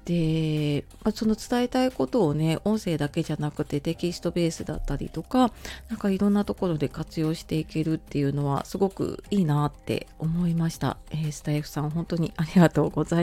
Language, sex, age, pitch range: Japanese, female, 30-49, 155-195 Hz